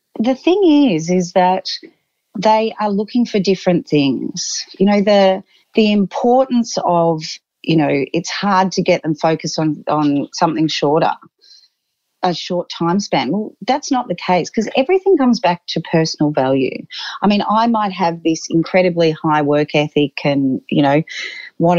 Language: English